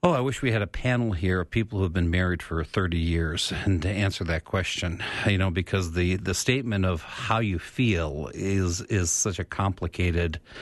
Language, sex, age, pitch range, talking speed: English, male, 50-69, 85-110 Hz, 210 wpm